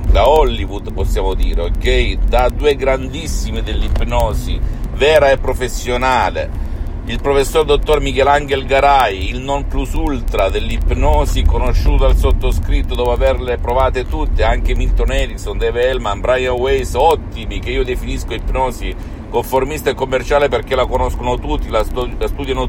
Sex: male